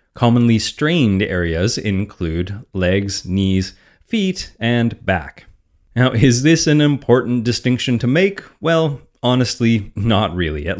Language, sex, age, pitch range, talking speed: English, male, 30-49, 95-130 Hz, 120 wpm